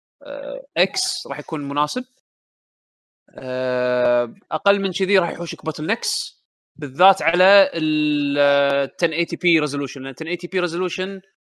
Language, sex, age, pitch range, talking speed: Arabic, male, 20-39, 145-195 Hz, 120 wpm